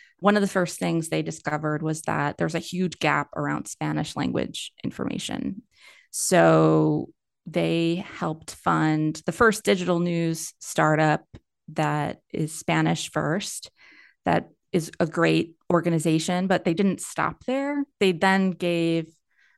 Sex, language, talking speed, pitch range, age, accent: female, English, 130 wpm, 155-185 Hz, 20-39, American